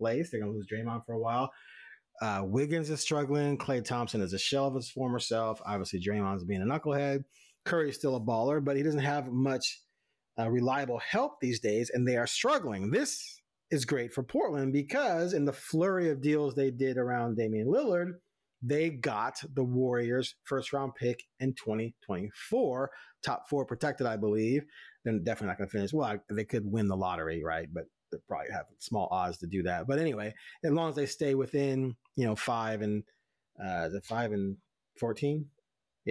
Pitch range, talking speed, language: 115-145 Hz, 190 wpm, English